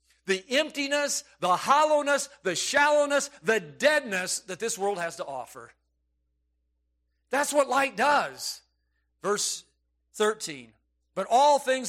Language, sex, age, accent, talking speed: English, male, 50-69, American, 115 wpm